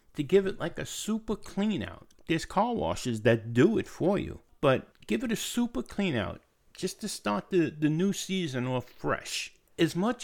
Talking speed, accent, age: 195 wpm, American, 60-79